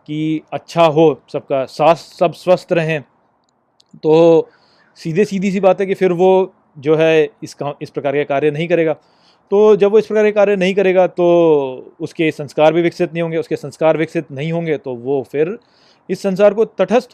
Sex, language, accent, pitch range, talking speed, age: male, Hindi, native, 155-190 Hz, 195 wpm, 30-49